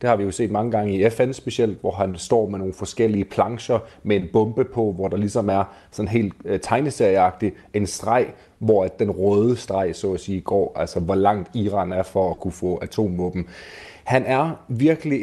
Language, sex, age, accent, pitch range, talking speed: Danish, male, 30-49, native, 95-115 Hz, 200 wpm